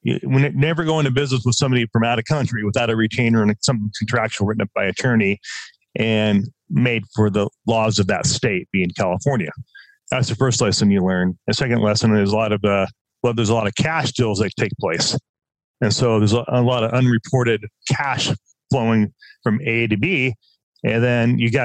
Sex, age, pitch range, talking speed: male, 30-49, 110-130 Hz, 200 wpm